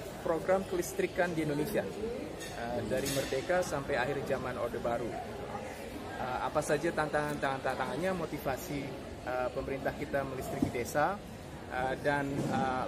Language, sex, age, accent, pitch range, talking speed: Indonesian, male, 20-39, native, 145-190 Hz, 115 wpm